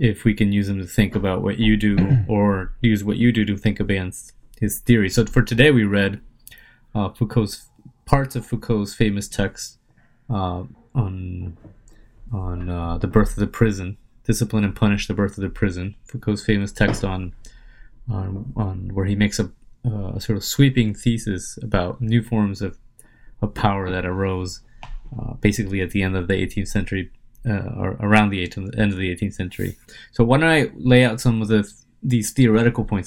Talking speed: 190 wpm